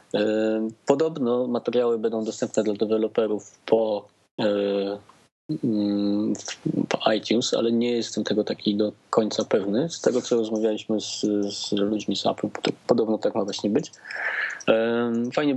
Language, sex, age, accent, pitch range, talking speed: Polish, male, 20-39, native, 105-115 Hz, 125 wpm